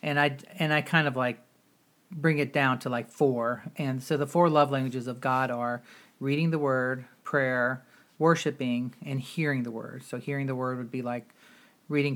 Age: 40-59